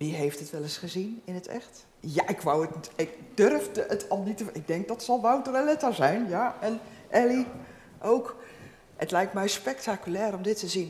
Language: Dutch